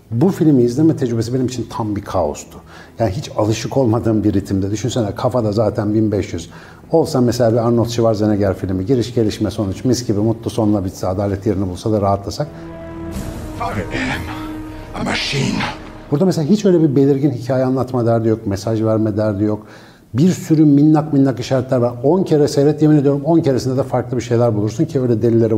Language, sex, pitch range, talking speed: Turkish, male, 105-135 Hz, 170 wpm